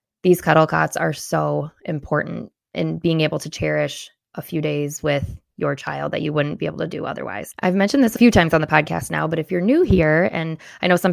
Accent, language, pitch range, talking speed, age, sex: American, English, 150-185 Hz, 235 wpm, 20-39, female